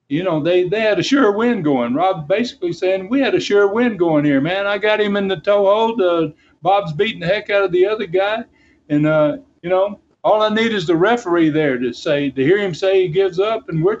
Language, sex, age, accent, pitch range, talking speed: English, male, 60-79, American, 155-210 Hz, 250 wpm